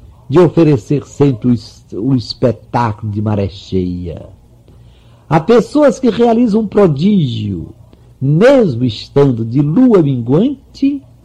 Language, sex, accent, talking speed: Portuguese, male, Brazilian, 100 wpm